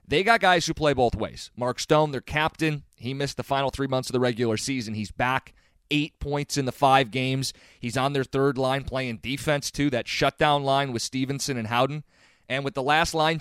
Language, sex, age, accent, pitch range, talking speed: English, male, 30-49, American, 125-155 Hz, 220 wpm